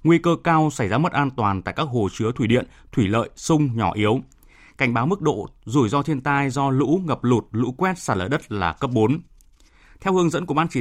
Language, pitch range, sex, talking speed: Vietnamese, 110-155 Hz, male, 250 wpm